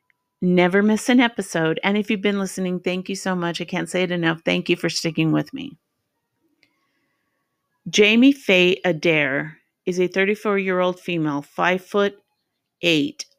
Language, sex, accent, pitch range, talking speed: English, female, American, 160-195 Hz, 150 wpm